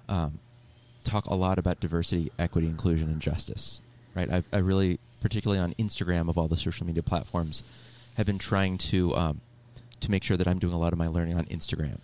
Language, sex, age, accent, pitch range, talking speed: English, male, 30-49, American, 85-115 Hz, 205 wpm